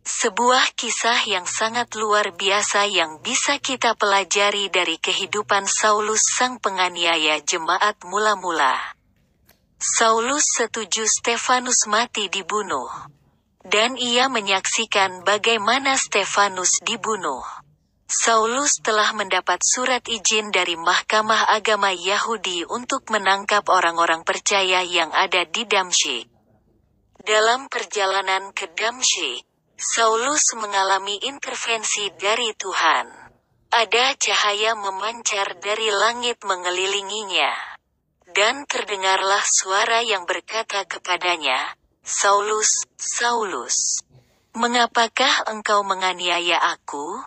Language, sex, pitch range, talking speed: Indonesian, female, 190-230 Hz, 90 wpm